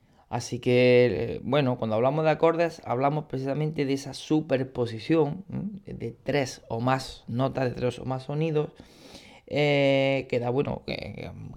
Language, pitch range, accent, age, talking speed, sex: Spanish, 115-140 Hz, Spanish, 20-39, 145 wpm, male